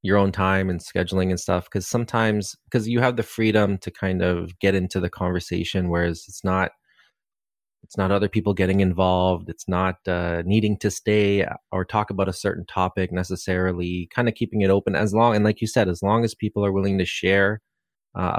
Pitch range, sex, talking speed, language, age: 90-105 Hz, male, 205 wpm, English, 30-49